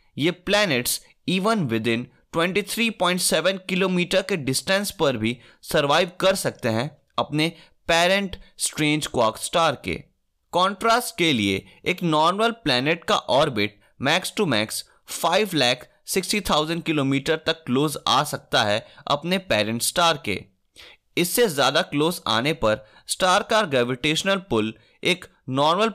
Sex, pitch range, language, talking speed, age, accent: male, 125-195 Hz, Hindi, 125 wpm, 20-39, native